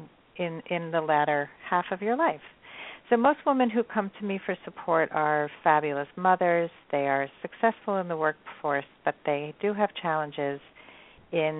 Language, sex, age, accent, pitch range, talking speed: English, female, 50-69, American, 150-195 Hz, 165 wpm